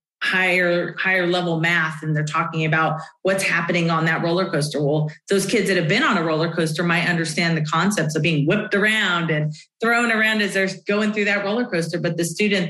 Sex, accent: female, American